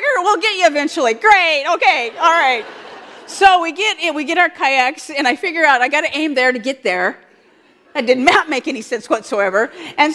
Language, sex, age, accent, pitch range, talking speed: English, female, 40-59, American, 260-370 Hz, 205 wpm